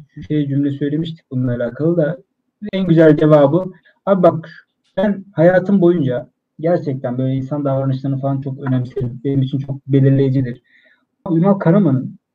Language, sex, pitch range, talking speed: Turkish, male, 135-180 Hz, 130 wpm